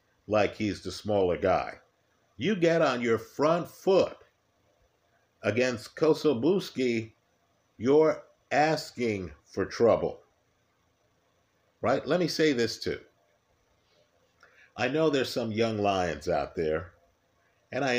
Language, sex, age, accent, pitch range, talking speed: English, male, 50-69, American, 100-125 Hz, 110 wpm